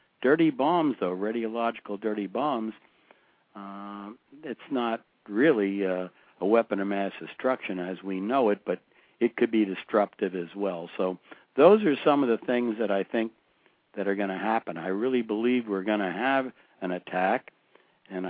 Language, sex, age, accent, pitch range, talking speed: English, male, 60-79, American, 95-120 Hz, 170 wpm